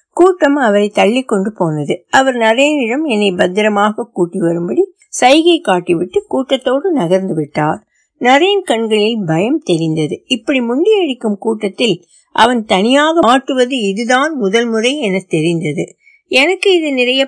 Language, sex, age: Tamil, female, 60-79